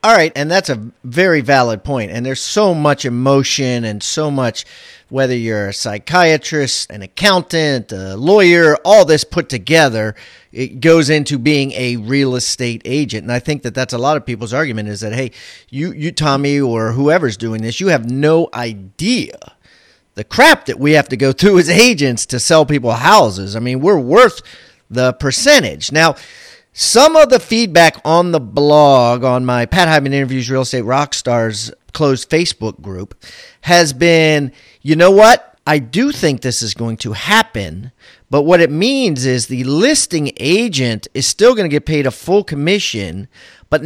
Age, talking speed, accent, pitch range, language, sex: 40-59, 180 wpm, American, 120-165 Hz, English, male